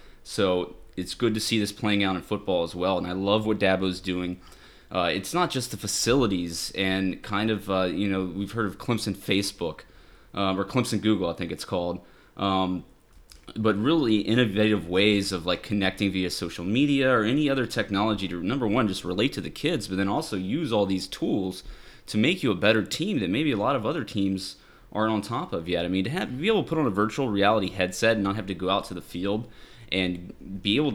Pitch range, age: 95-110 Hz, 20-39